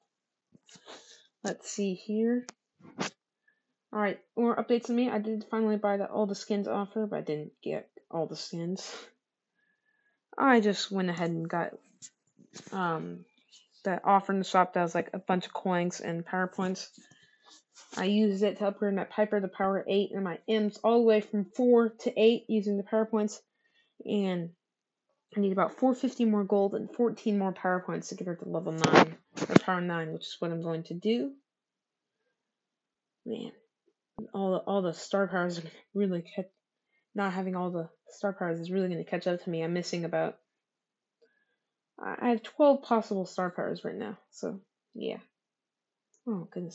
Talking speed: 175 wpm